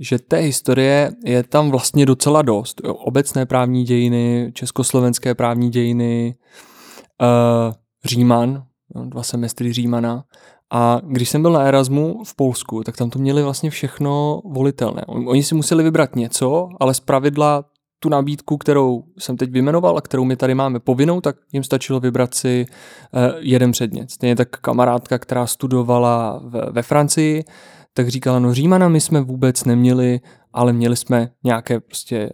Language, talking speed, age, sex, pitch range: Czech, 150 wpm, 20-39, male, 120-140 Hz